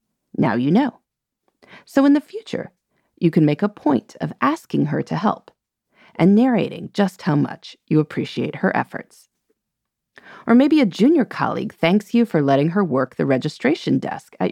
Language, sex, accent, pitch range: English, female, American, 160-240 Hz